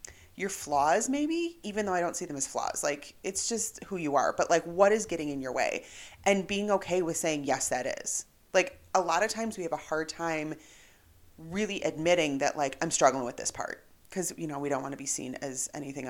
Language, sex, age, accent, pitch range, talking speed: English, female, 30-49, American, 145-190 Hz, 235 wpm